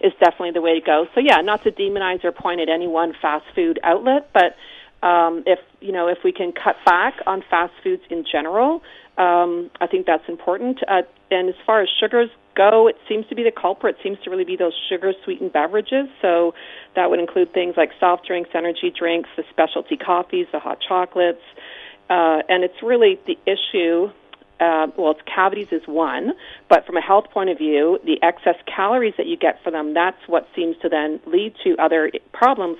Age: 40-59